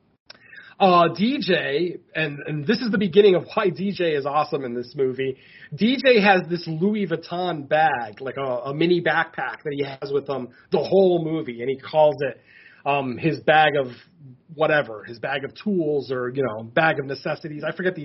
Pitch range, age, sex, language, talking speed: 145-200 Hz, 30-49, male, English, 190 wpm